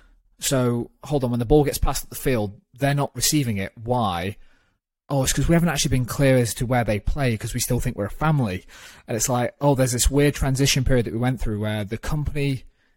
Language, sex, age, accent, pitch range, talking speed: English, male, 30-49, British, 110-130 Hz, 240 wpm